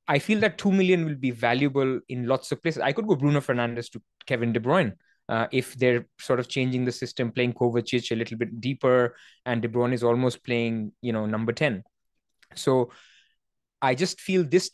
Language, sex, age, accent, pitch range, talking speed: English, male, 20-39, Indian, 125-165 Hz, 205 wpm